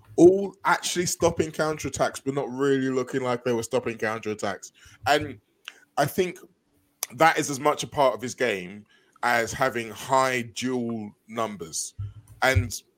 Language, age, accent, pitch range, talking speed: English, 20-39, British, 115-140 Hz, 145 wpm